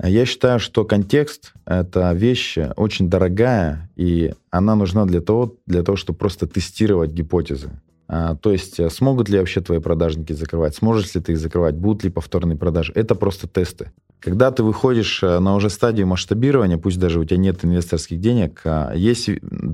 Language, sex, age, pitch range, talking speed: Russian, male, 20-39, 85-110 Hz, 175 wpm